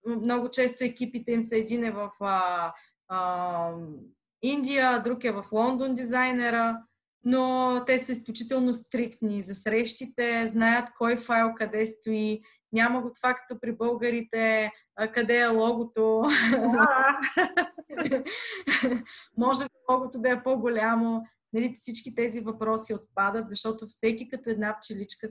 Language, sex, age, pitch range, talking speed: Bulgarian, female, 20-39, 215-245 Hz, 115 wpm